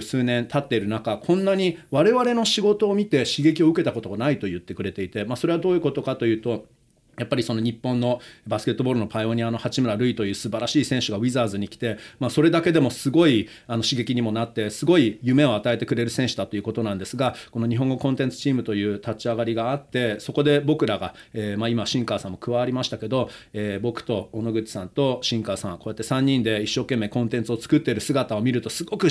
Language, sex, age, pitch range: Japanese, male, 30-49, 110-140 Hz